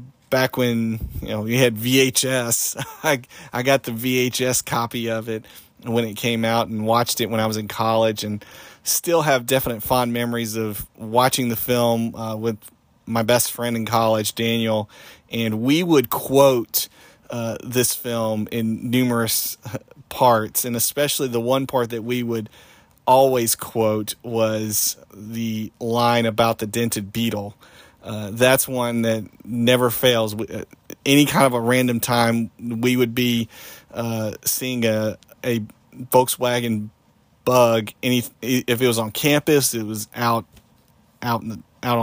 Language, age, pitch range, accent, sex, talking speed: English, 40-59, 110-125 Hz, American, male, 155 wpm